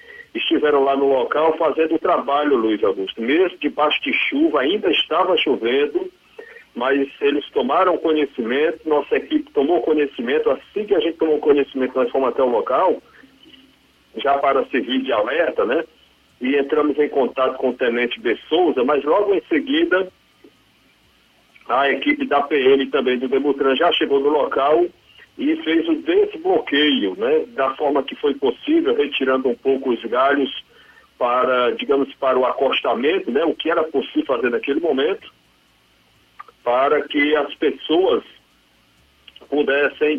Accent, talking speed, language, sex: Brazilian, 145 wpm, Portuguese, male